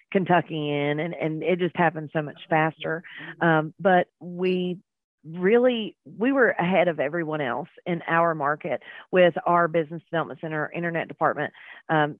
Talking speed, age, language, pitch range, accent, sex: 155 wpm, 40-59, English, 155-180 Hz, American, female